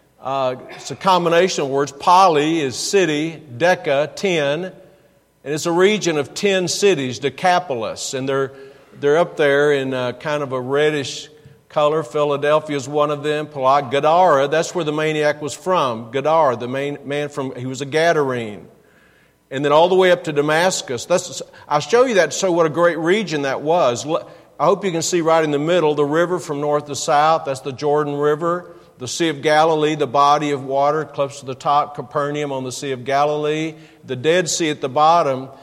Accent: American